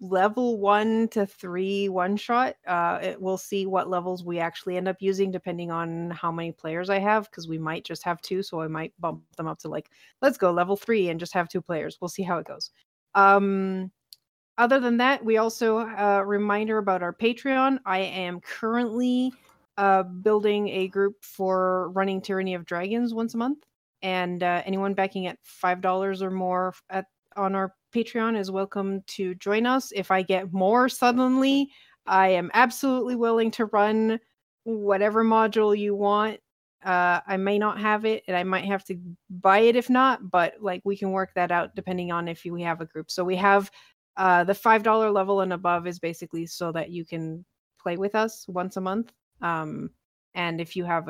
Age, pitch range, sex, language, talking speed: 30-49, 180-220 Hz, female, English, 195 wpm